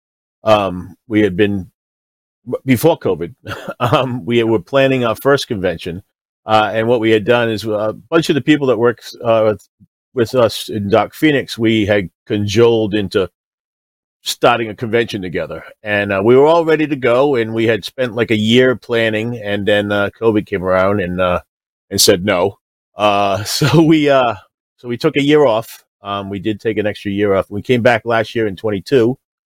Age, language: 40-59, English